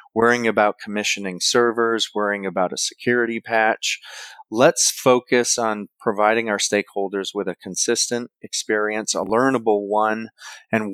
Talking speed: 125 wpm